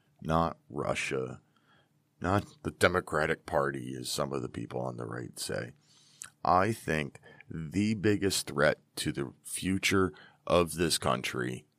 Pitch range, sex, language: 80-110 Hz, male, English